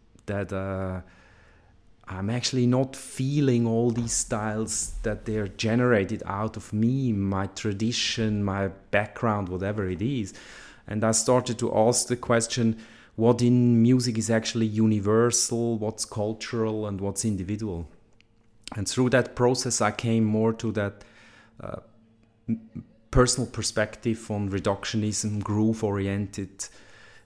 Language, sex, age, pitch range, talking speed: English, male, 30-49, 105-120 Hz, 120 wpm